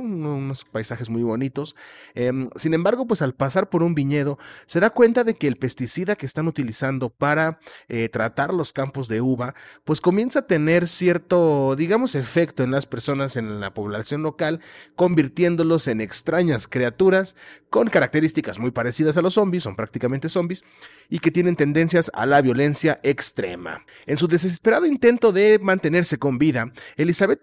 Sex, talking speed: male, 165 wpm